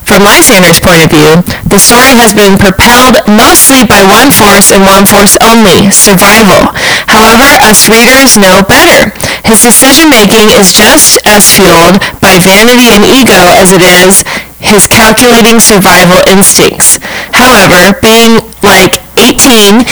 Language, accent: English, American